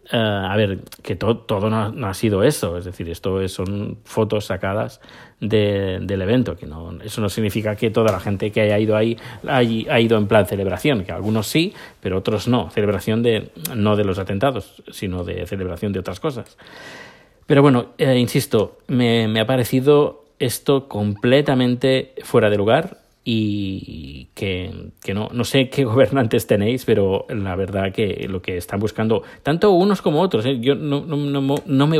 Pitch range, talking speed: 100-130 Hz, 185 wpm